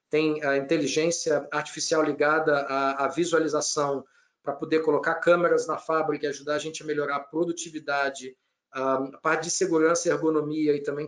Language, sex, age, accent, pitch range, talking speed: Portuguese, male, 50-69, Brazilian, 145-170 Hz, 155 wpm